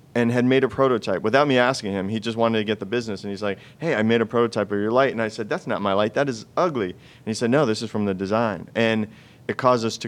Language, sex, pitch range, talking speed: English, male, 100-120 Hz, 305 wpm